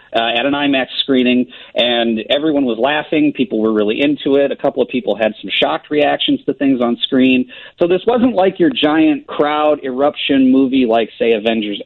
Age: 40-59